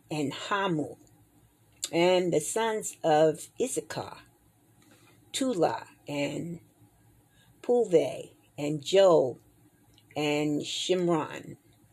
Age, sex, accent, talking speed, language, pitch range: 40-59, female, American, 70 wpm, English, 140-180 Hz